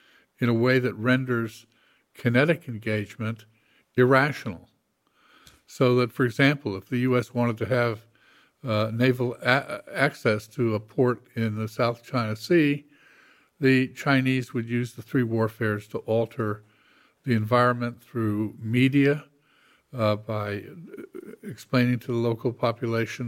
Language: English